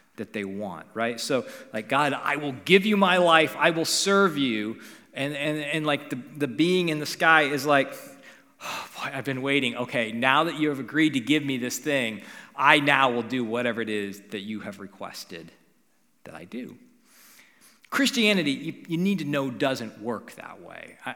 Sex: male